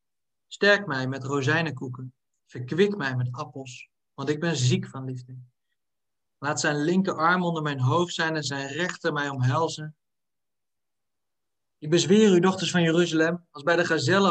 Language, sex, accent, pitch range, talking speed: Dutch, male, Dutch, 130-180 Hz, 150 wpm